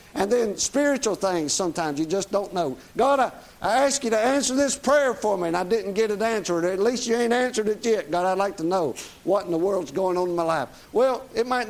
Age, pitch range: 50-69, 170-225 Hz